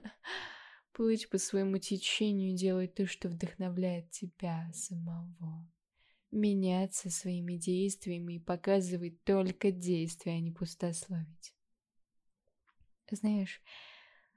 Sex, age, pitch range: female, 20-39, 175-200 Hz